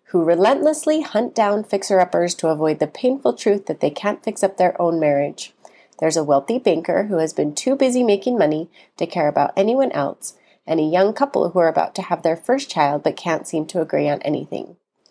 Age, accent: 30-49, American